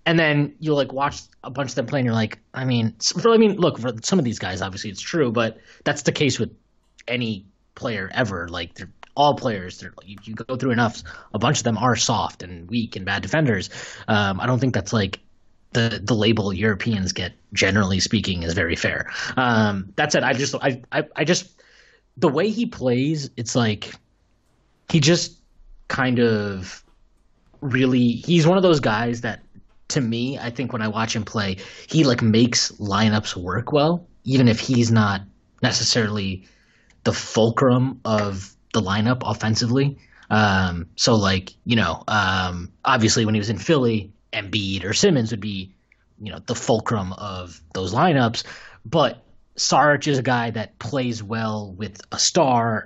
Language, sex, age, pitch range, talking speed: English, male, 20-39, 100-130 Hz, 180 wpm